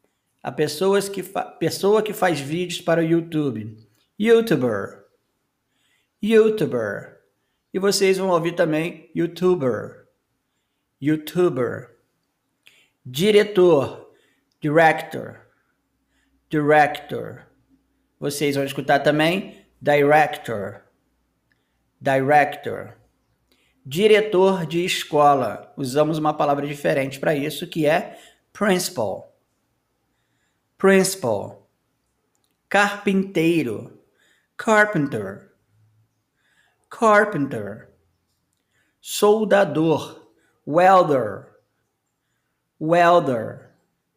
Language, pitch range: Portuguese, 145-200 Hz